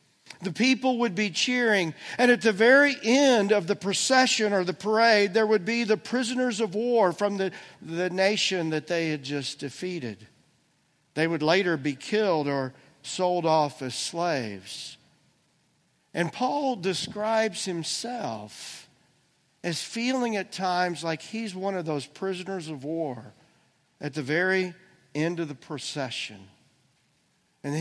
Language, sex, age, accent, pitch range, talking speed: English, male, 50-69, American, 150-210 Hz, 140 wpm